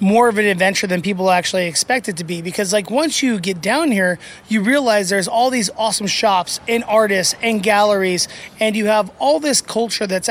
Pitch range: 190-225 Hz